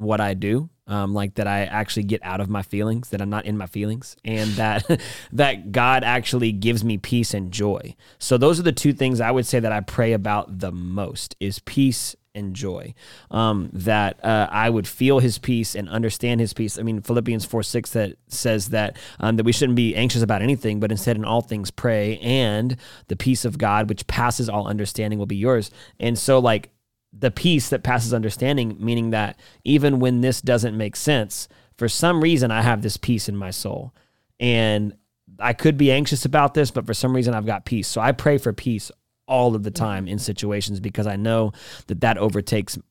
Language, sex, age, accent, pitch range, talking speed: English, male, 20-39, American, 105-125 Hz, 210 wpm